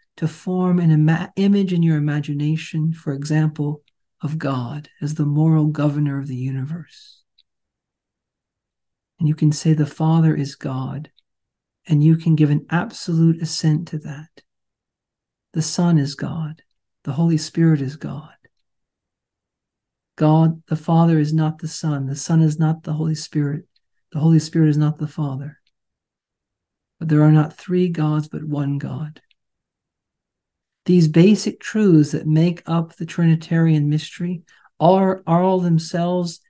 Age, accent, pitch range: 50-69, American, 150-175 Hz